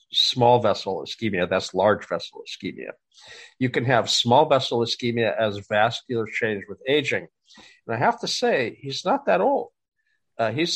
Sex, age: male, 50-69